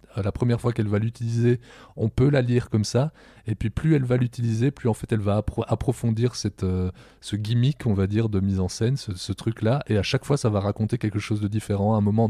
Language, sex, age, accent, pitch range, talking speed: French, male, 20-39, French, 100-115 Hz, 255 wpm